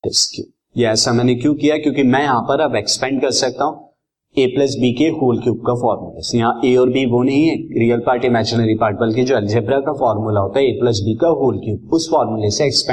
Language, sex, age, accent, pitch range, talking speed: Hindi, male, 30-49, native, 115-155 Hz, 85 wpm